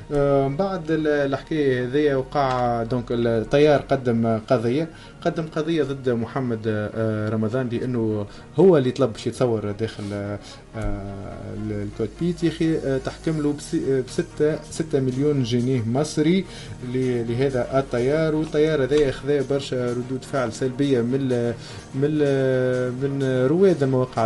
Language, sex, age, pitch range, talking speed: Arabic, male, 20-39, 120-140 Hz, 100 wpm